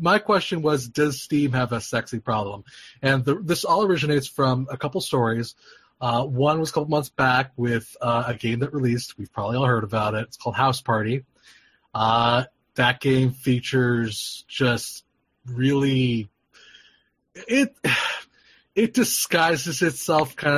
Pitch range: 120-150 Hz